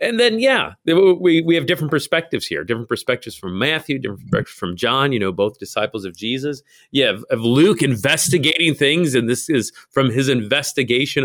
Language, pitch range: English, 105-145 Hz